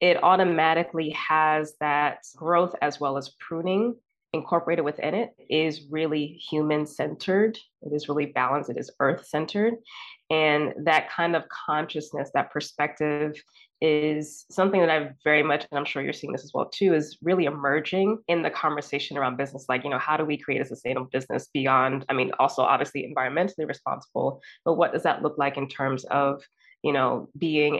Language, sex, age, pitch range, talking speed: English, female, 20-39, 140-160 Hz, 180 wpm